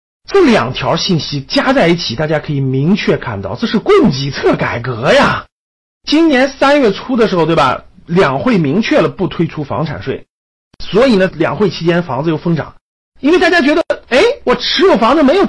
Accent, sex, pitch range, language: native, male, 145-235 Hz, Chinese